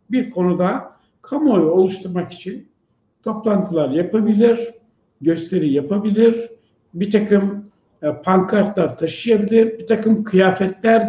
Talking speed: 85 wpm